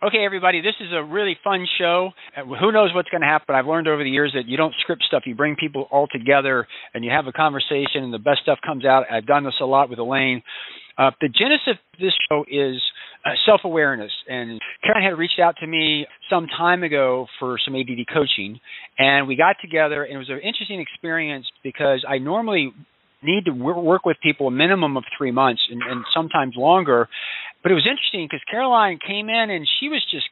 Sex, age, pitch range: male, 40-59, 140-200 Hz